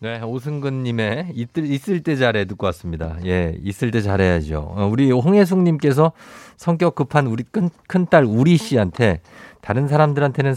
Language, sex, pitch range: Korean, male, 105-160 Hz